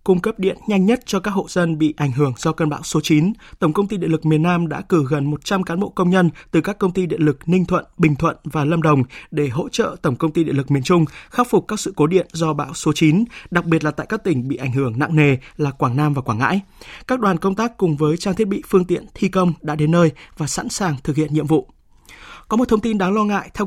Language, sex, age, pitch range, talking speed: Vietnamese, male, 20-39, 155-195 Hz, 285 wpm